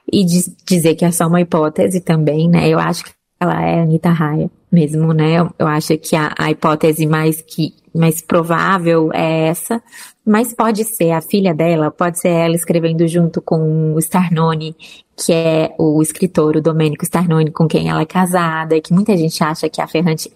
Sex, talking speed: female, 190 wpm